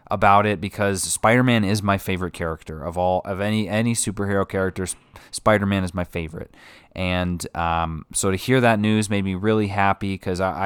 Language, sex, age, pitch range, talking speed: English, male, 20-39, 95-125 Hz, 175 wpm